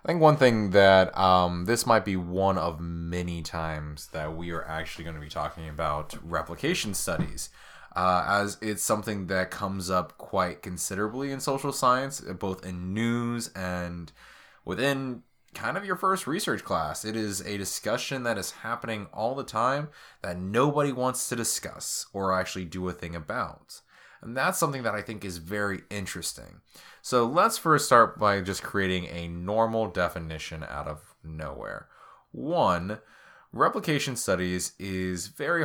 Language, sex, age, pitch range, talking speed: English, male, 20-39, 85-115 Hz, 160 wpm